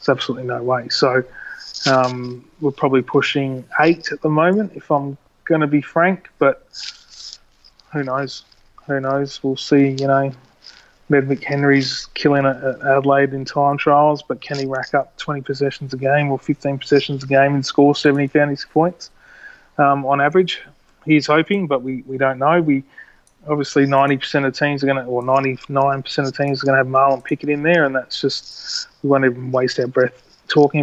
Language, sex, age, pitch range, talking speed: English, male, 30-49, 130-145 Hz, 190 wpm